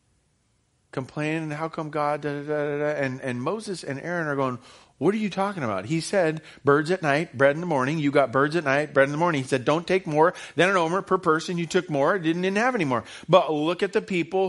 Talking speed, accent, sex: 235 wpm, American, male